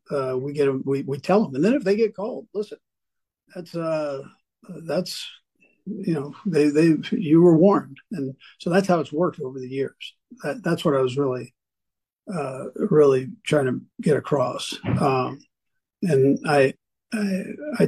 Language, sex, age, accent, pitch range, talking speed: English, male, 50-69, American, 135-185 Hz, 170 wpm